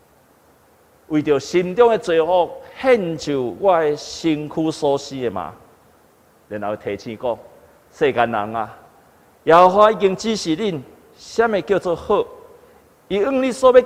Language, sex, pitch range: Chinese, male, 140-225 Hz